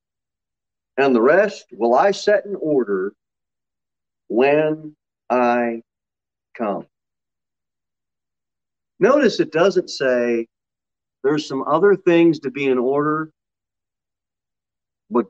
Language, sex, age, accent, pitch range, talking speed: English, male, 40-59, American, 125-175 Hz, 95 wpm